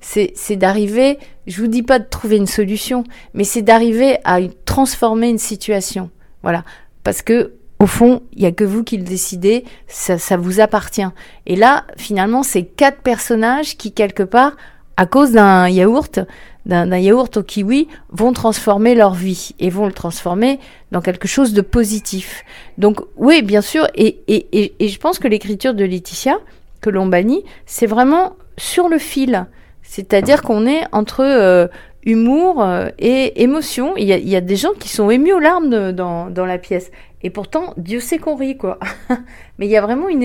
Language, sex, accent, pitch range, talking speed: French, female, French, 195-255 Hz, 190 wpm